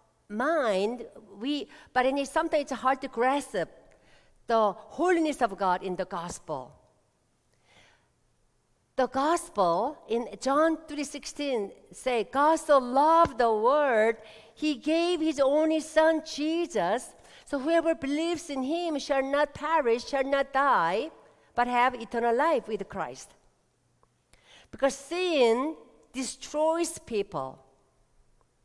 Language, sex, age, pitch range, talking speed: English, female, 50-69, 235-320 Hz, 115 wpm